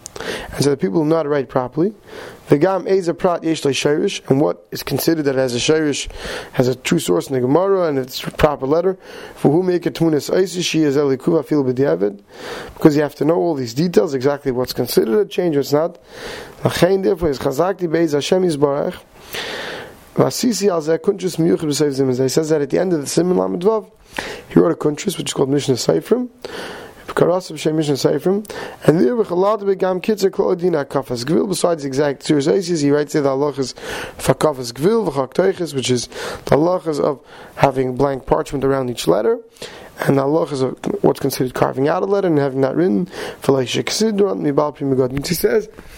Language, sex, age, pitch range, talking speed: English, male, 30-49, 140-200 Hz, 140 wpm